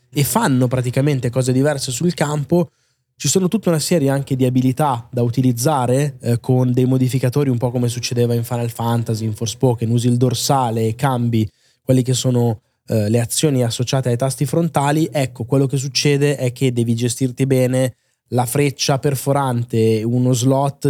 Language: Italian